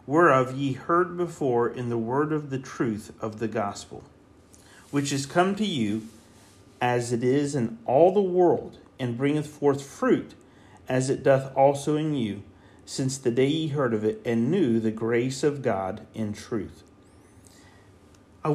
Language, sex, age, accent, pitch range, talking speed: English, male, 40-59, American, 115-165 Hz, 165 wpm